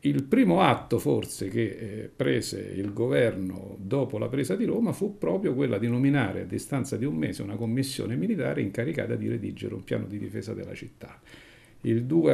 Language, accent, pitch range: Italian, native, 100-130 Hz